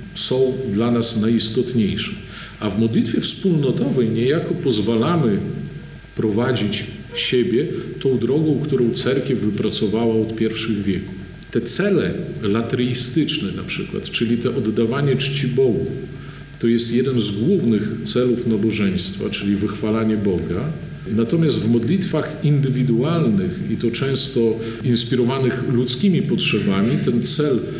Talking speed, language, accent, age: 110 wpm, Polish, native, 50-69